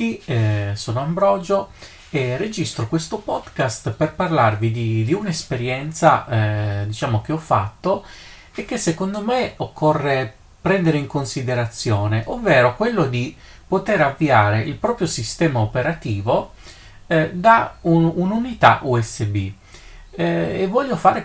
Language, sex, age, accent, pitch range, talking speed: Italian, male, 30-49, native, 110-140 Hz, 125 wpm